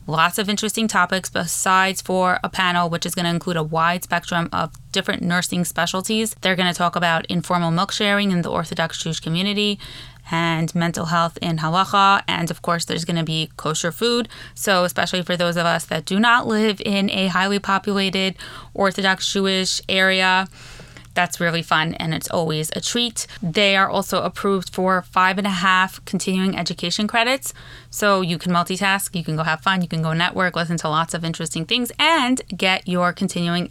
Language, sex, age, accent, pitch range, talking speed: English, female, 20-39, American, 170-200 Hz, 190 wpm